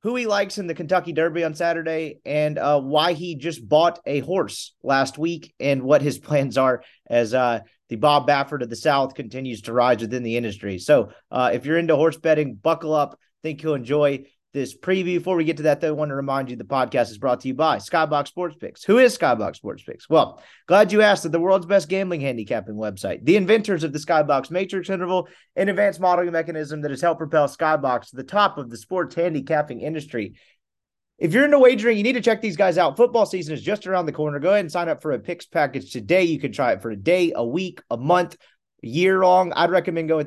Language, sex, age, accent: English, male, 30-49, American